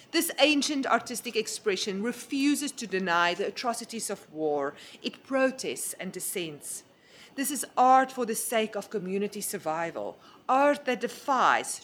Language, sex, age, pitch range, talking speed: English, female, 40-59, 180-240 Hz, 135 wpm